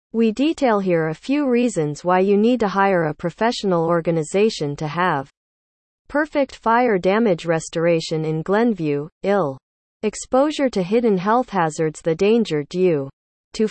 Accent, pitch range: American, 160-225 Hz